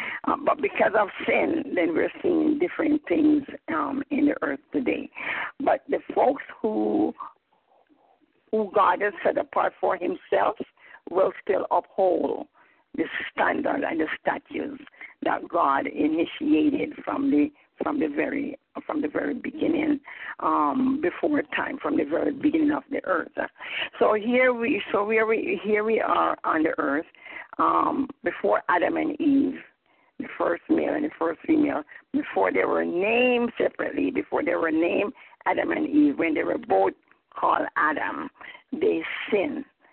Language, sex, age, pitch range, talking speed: English, female, 50-69, 220-315 Hz, 150 wpm